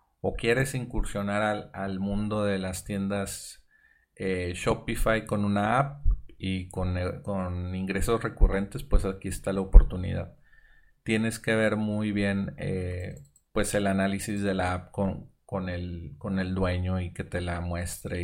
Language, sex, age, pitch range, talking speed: Spanish, male, 30-49, 95-110 Hz, 150 wpm